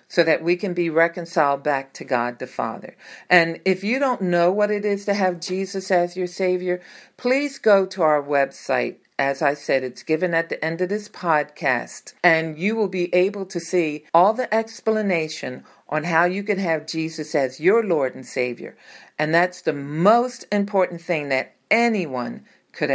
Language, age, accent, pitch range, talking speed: English, 50-69, American, 155-205 Hz, 185 wpm